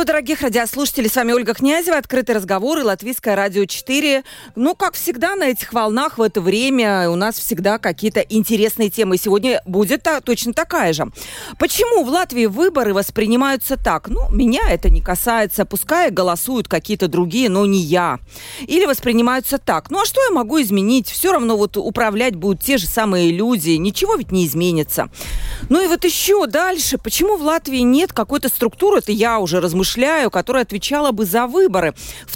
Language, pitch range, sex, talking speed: Russian, 200-280 Hz, female, 170 wpm